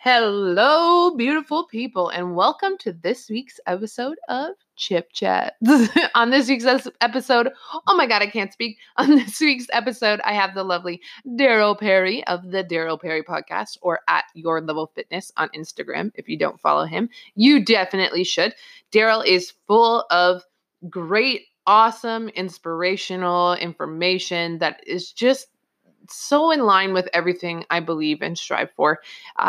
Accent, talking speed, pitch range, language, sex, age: American, 150 wpm, 160-235 Hz, English, female, 20-39